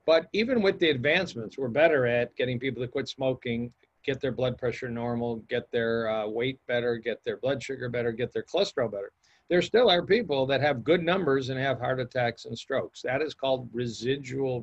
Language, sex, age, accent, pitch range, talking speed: English, male, 50-69, American, 125-150 Hz, 205 wpm